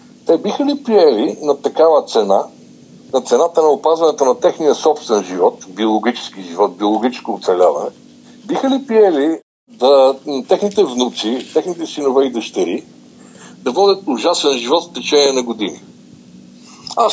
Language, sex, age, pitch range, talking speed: Bulgarian, male, 60-79, 130-195 Hz, 135 wpm